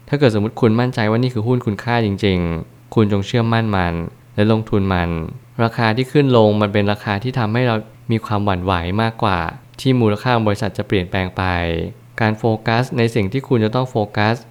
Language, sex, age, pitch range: Thai, male, 20-39, 100-120 Hz